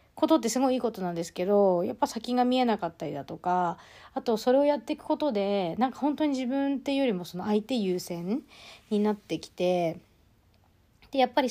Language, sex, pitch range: Japanese, female, 175-220 Hz